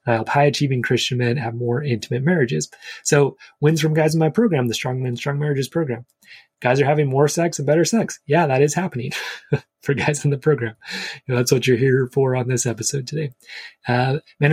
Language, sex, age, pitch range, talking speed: English, male, 30-49, 125-150 Hz, 210 wpm